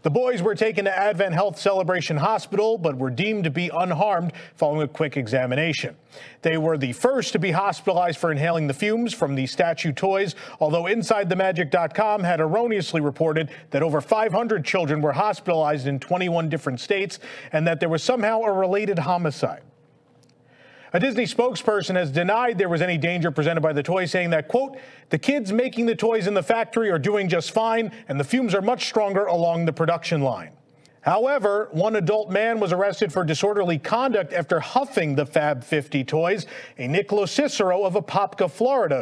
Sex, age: male, 40-59